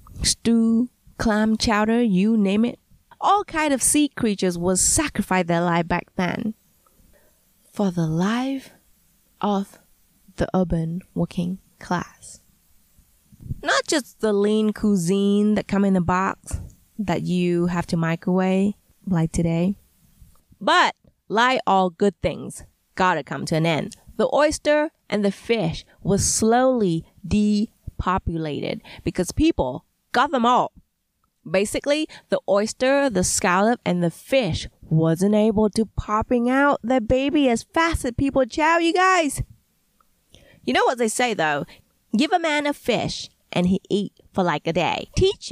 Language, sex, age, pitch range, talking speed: English, female, 20-39, 180-245 Hz, 140 wpm